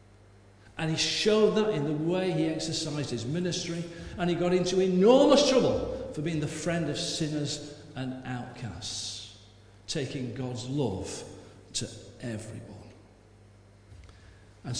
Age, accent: 50-69, British